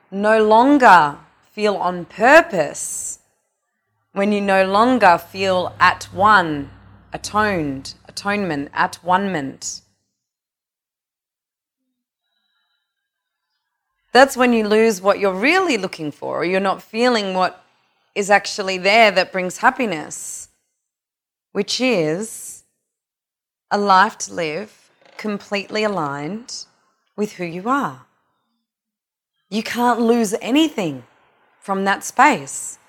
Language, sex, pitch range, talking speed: English, female, 185-245 Hz, 100 wpm